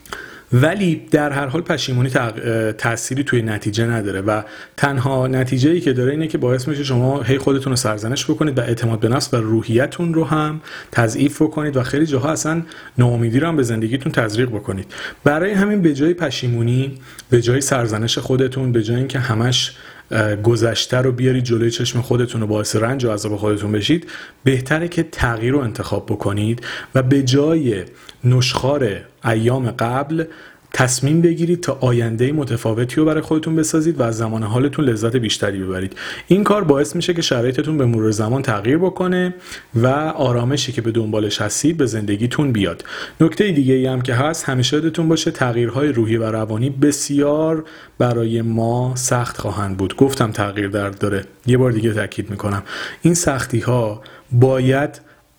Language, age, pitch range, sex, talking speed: Persian, 40-59, 110-145 Hz, male, 165 wpm